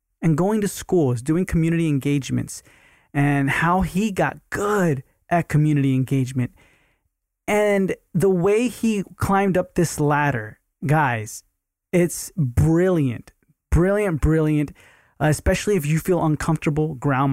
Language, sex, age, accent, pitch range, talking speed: English, male, 20-39, American, 135-165 Hz, 120 wpm